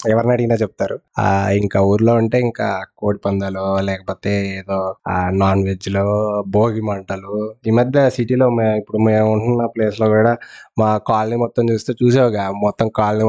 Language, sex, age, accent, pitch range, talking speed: Telugu, male, 20-39, native, 105-125 Hz, 145 wpm